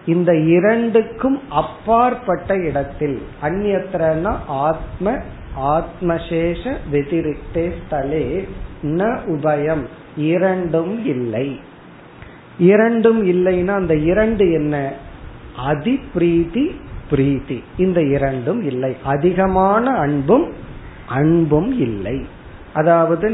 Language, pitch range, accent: Tamil, 145-190 Hz, native